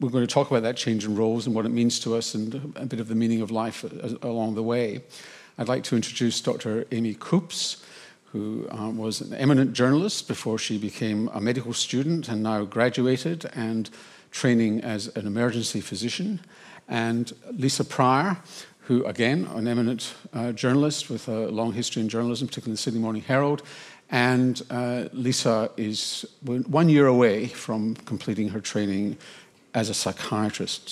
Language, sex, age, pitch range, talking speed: English, male, 50-69, 110-145 Hz, 170 wpm